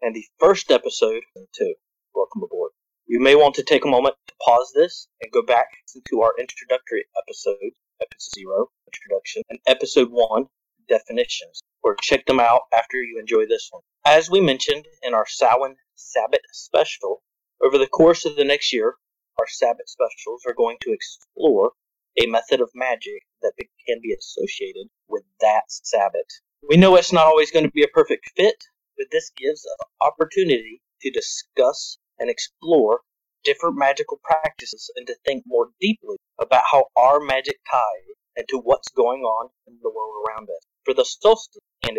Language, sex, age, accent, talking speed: English, male, 30-49, American, 170 wpm